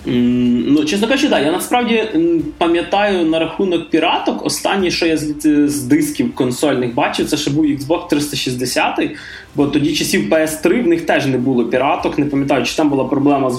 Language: Ukrainian